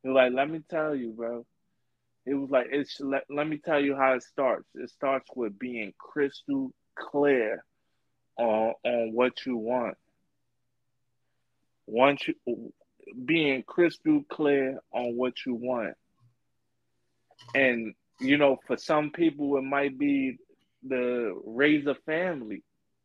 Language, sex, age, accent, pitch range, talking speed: English, male, 20-39, American, 120-140 Hz, 135 wpm